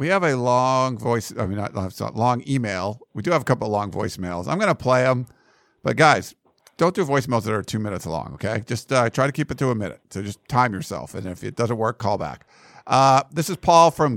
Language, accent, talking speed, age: English, American, 245 wpm, 50-69